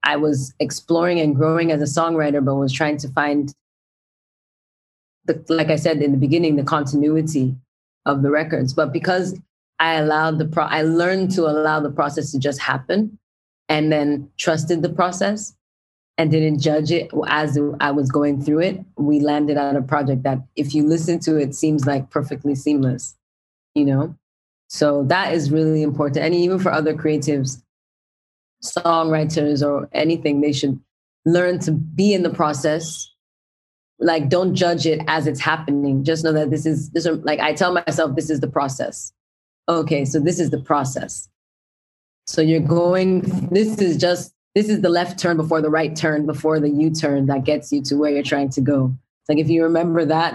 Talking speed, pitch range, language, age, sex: 180 wpm, 140-165 Hz, English, 20-39, female